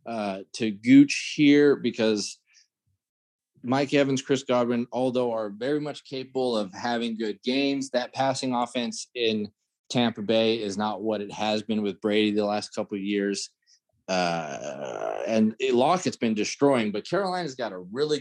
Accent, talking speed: American, 160 wpm